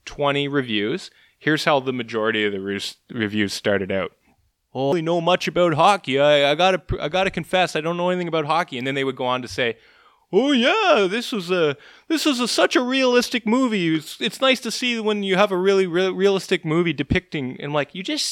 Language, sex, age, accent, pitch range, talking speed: English, male, 20-39, American, 115-180 Hz, 225 wpm